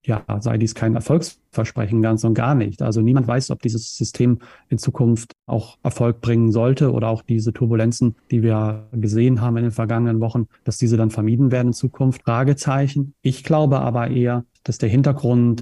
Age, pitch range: 30-49, 115-135 Hz